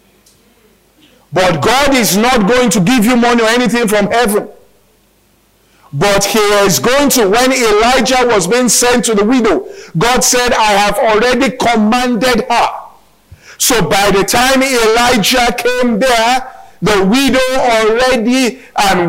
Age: 50-69